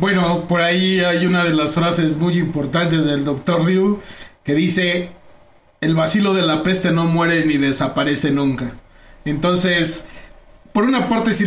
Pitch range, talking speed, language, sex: 150-175 Hz, 155 wpm, Spanish, male